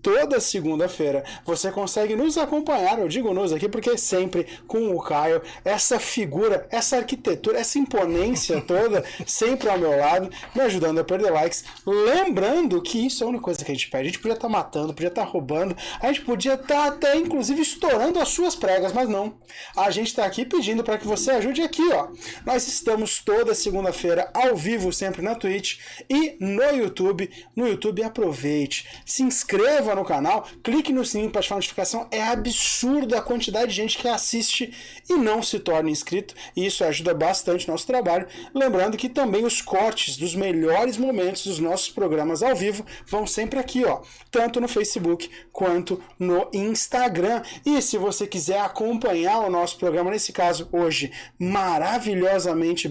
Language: Portuguese